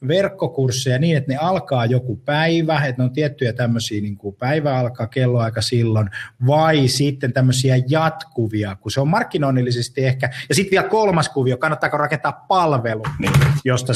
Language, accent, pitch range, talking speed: Finnish, native, 120-145 Hz, 145 wpm